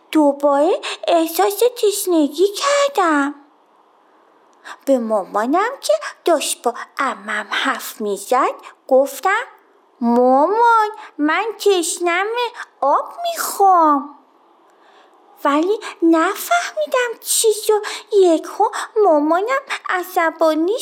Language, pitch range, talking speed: Persian, 295-405 Hz, 75 wpm